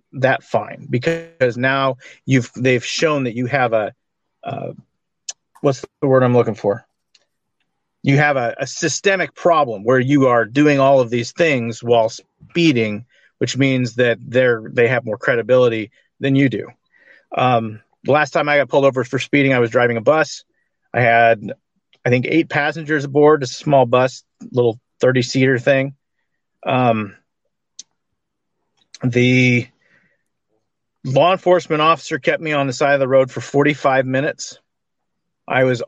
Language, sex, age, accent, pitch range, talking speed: English, male, 40-59, American, 120-150 Hz, 155 wpm